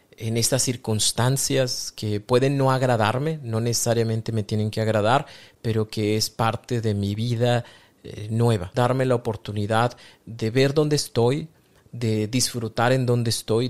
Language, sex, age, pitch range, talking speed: Spanish, male, 30-49, 110-125 Hz, 150 wpm